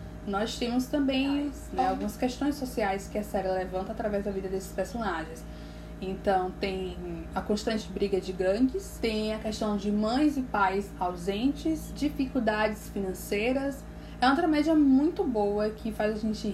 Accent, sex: Brazilian, female